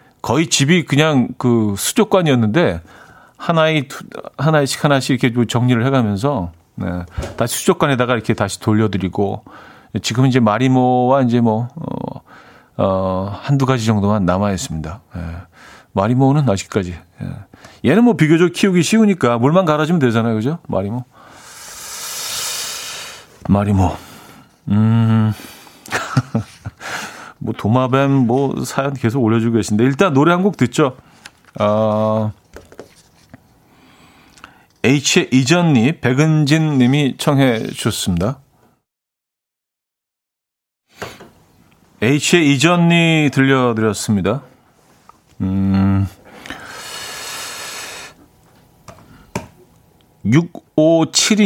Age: 40-59